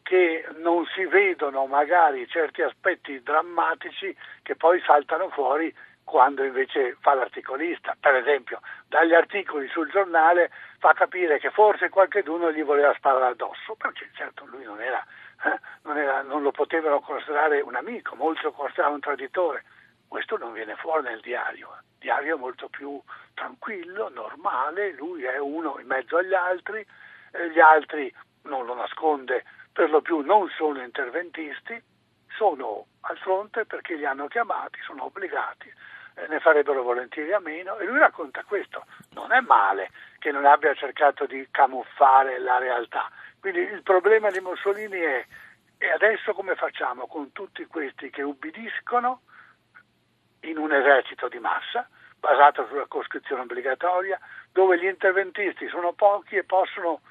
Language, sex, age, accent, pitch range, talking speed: Italian, male, 60-79, native, 145-210 Hz, 150 wpm